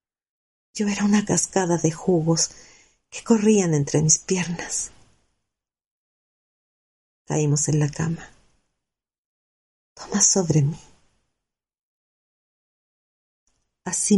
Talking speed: 80 wpm